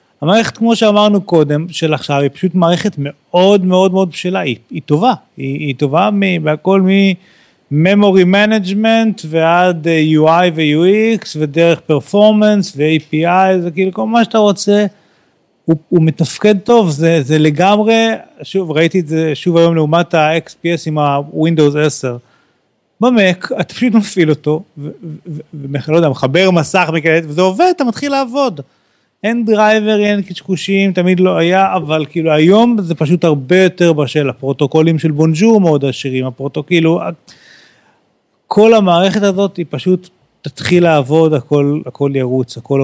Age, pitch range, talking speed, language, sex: 40-59, 150-190 Hz, 145 wpm, Hebrew, male